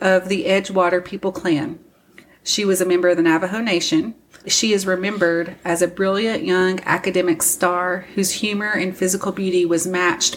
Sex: female